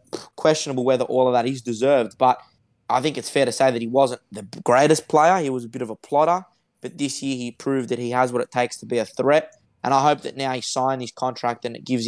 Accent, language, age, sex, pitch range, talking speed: Australian, English, 20-39, male, 125-145 Hz, 270 wpm